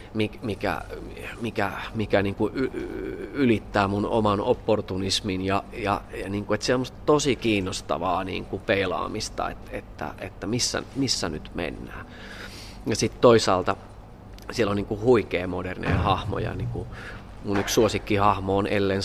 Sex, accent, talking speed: male, native, 130 wpm